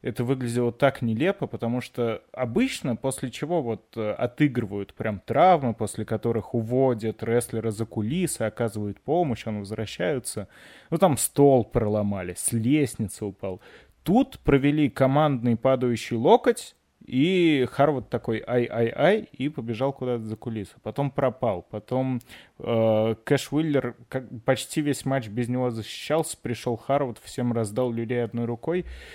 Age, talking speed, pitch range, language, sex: 20-39, 130 wpm, 115-150 Hz, Russian, male